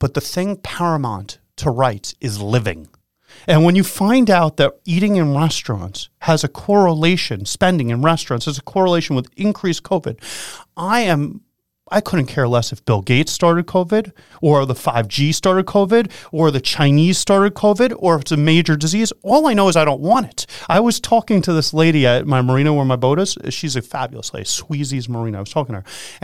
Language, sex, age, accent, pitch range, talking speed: English, male, 30-49, American, 130-200 Hz, 200 wpm